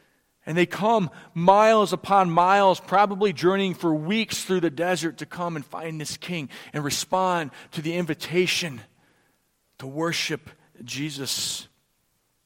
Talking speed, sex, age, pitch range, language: 130 wpm, male, 40-59, 145-170 Hz, English